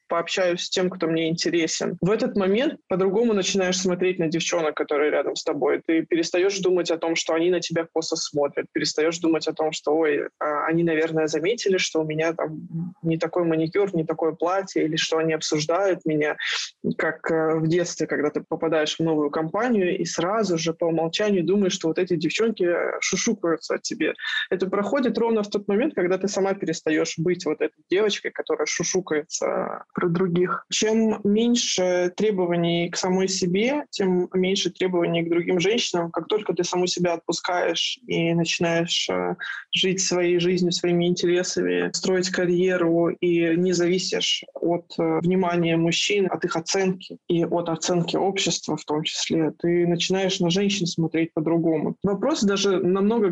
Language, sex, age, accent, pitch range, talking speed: Russian, male, 20-39, native, 165-190 Hz, 165 wpm